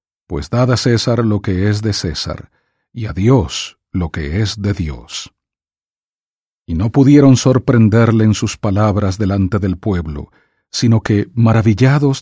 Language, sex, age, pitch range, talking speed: English, male, 40-59, 95-130 Hz, 145 wpm